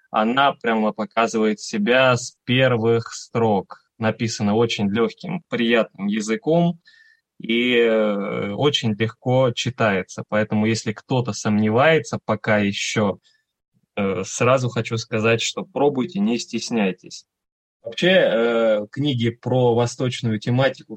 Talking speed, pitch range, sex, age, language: 95 wpm, 110-130 Hz, male, 20-39, Russian